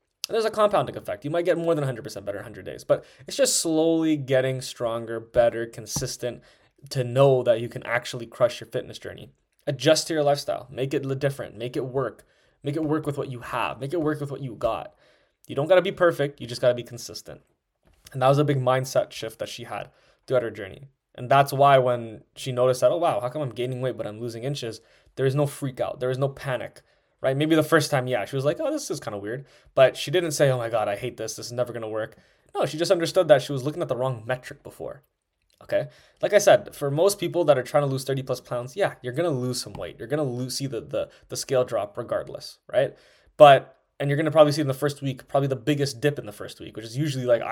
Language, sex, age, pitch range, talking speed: English, male, 20-39, 125-150 Hz, 265 wpm